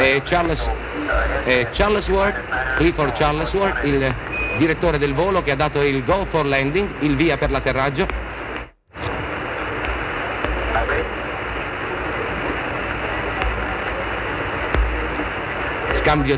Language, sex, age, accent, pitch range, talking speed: Italian, male, 60-79, native, 135-175 Hz, 90 wpm